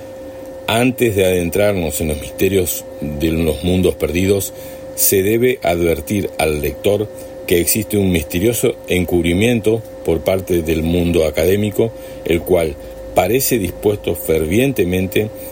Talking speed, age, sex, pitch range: 115 wpm, 50-69, male, 85-115 Hz